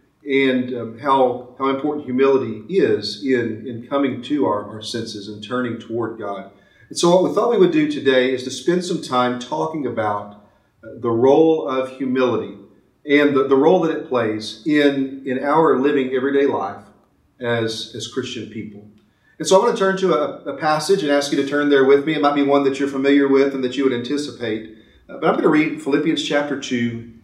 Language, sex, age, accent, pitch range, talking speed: English, male, 40-59, American, 115-145 Hz, 205 wpm